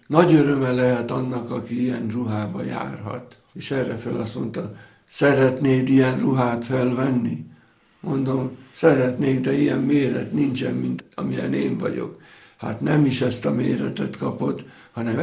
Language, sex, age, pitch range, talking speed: Hungarian, male, 60-79, 110-130 Hz, 140 wpm